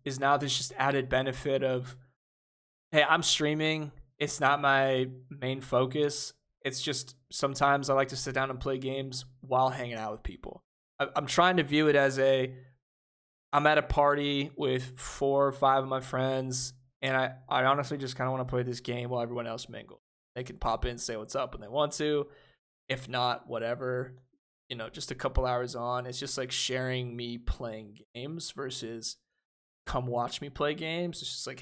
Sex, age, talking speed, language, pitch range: male, 20-39, 195 wpm, English, 125-140 Hz